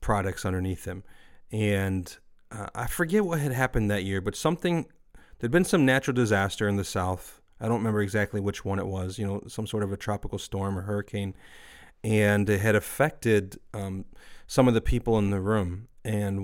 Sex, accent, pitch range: male, American, 100-115 Hz